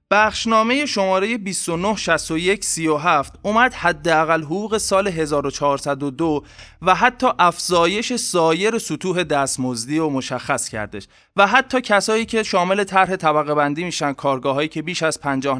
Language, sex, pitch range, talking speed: Persian, male, 145-195 Hz, 125 wpm